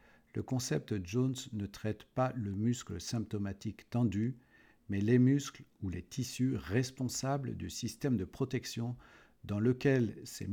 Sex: male